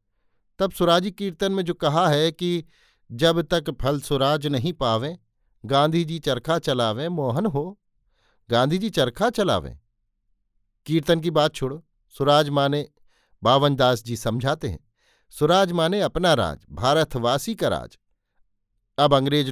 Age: 50-69